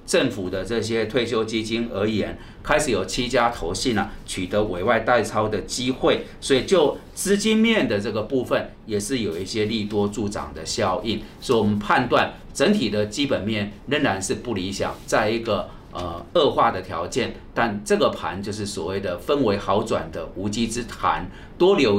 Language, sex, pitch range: Chinese, male, 100-130 Hz